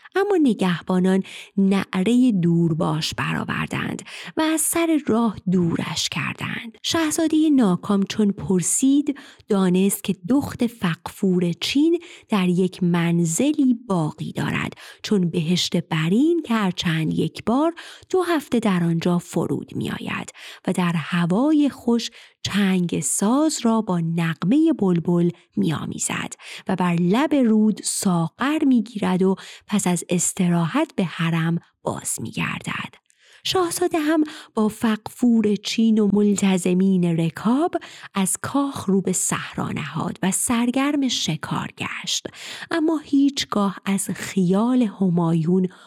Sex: female